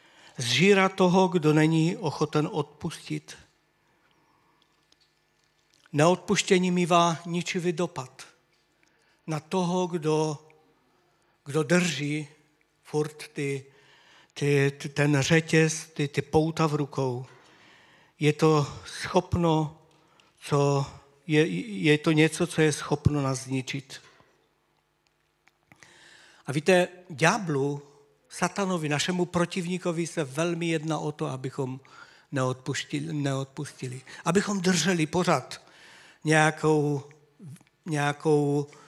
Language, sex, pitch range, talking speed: Czech, male, 140-165 Hz, 85 wpm